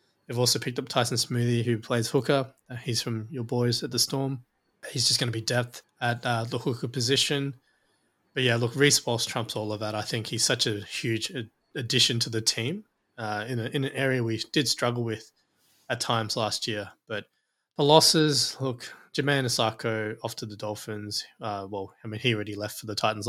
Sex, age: male, 20-39